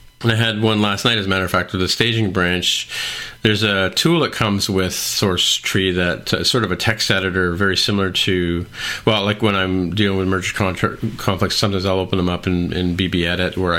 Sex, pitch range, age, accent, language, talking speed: male, 90-105 Hz, 40-59, American, English, 215 wpm